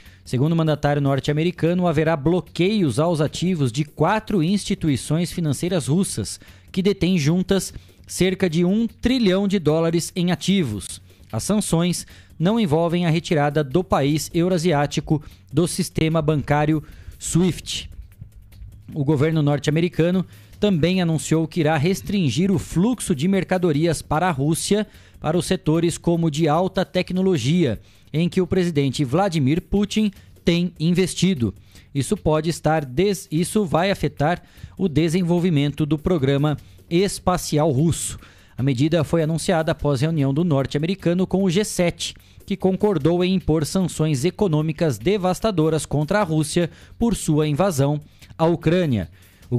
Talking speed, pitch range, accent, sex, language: 125 wpm, 145-185 Hz, Brazilian, male, Portuguese